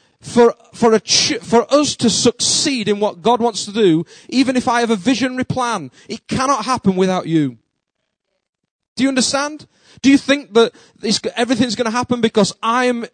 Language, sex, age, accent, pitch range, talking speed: English, male, 30-49, British, 195-255 Hz, 180 wpm